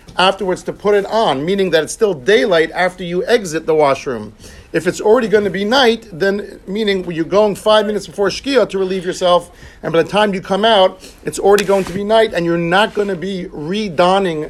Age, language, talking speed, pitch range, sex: 50-69, English, 220 wpm, 170-215 Hz, male